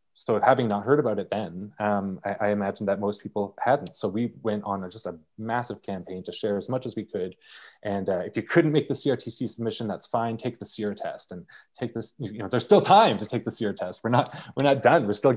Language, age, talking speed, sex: English, 20-39, 255 wpm, male